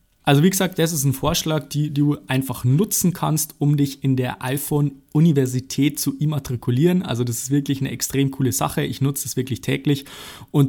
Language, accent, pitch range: German, German, 125-145 Hz